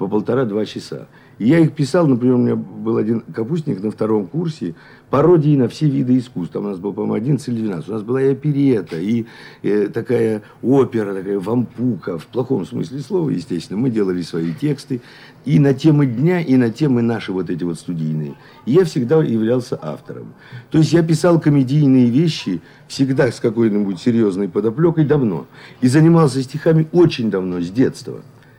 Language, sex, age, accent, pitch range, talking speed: Russian, male, 50-69, native, 95-145 Hz, 175 wpm